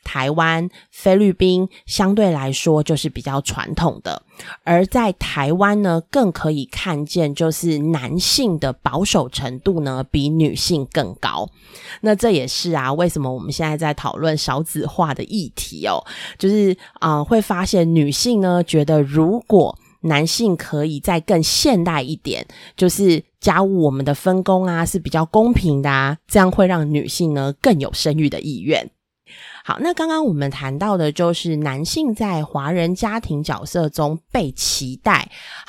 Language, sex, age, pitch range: Chinese, female, 20-39, 150-195 Hz